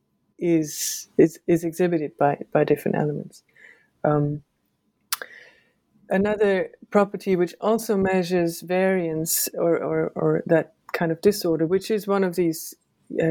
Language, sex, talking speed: English, female, 125 wpm